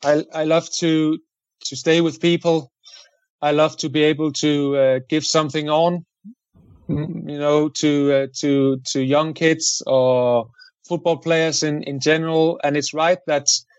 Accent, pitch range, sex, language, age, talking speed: German, 140-170 Hz, male, English, 30-49, 155 wpm